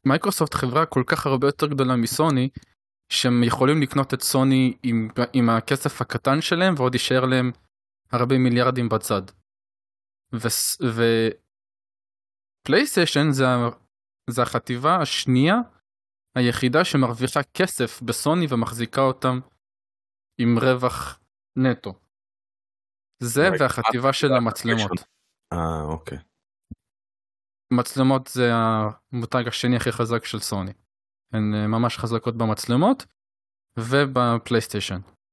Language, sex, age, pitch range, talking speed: Hebrew, male, 20-39, 115-140 Hz, 100 wpm